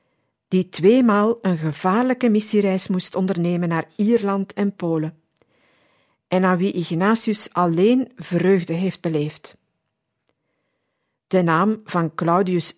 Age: 50-69